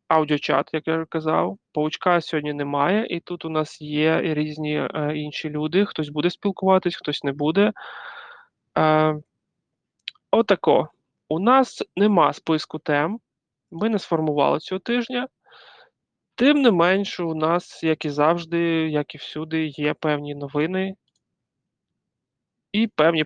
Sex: male